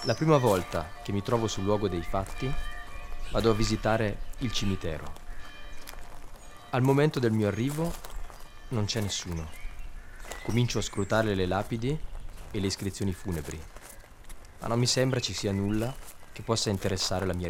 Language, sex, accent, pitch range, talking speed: Italian, male, native, 90-115 Hz, 150 wpm